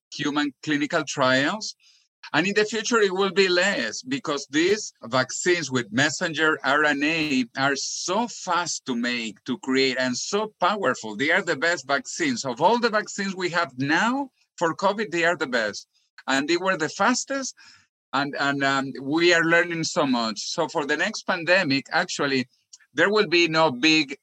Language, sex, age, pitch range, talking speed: English, male, 50-69, 140-195 Hz, 170 wpm